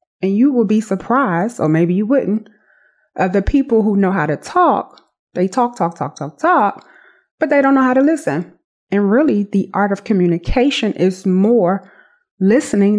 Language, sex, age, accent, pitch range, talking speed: English, female, 30-49, American, 185-245 Hz, 180 wpm